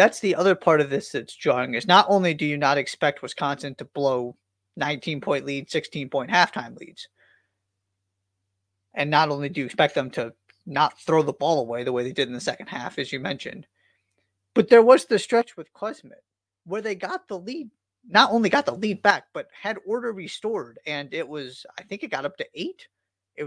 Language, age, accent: English, 30-49, American